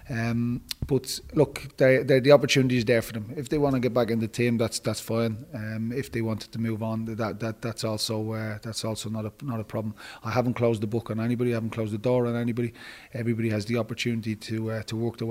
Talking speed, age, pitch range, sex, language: 260 wpm, 30-49, 110-120 Hz, male, English